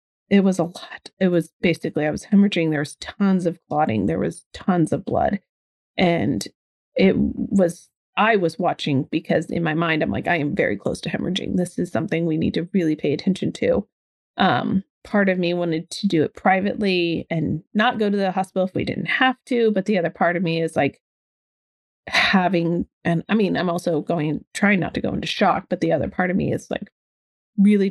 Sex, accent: female, American